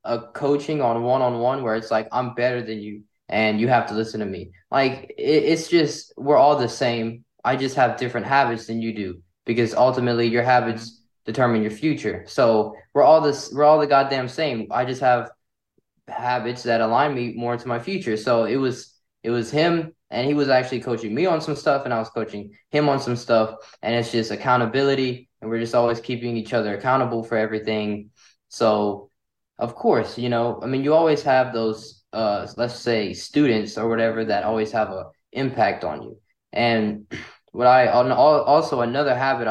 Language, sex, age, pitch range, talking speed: English, male, 20-39, 115-130 Hz, 195 wpm